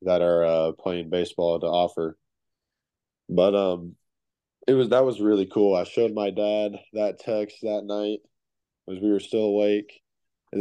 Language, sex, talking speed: English, male, 165 wpm